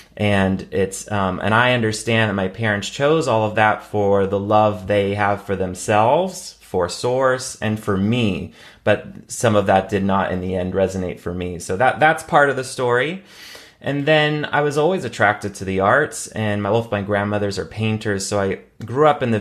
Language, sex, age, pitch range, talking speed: English, male, 30-49, 95-115 Hz, 205 wpm